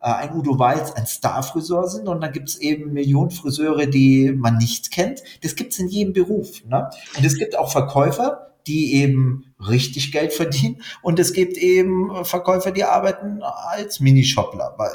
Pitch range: 130-160 Hz